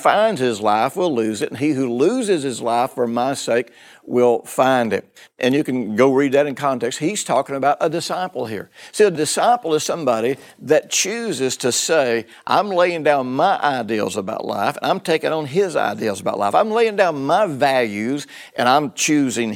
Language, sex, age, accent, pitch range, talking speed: English, male, 60-79, American, 115-155 Hz, 195 wpm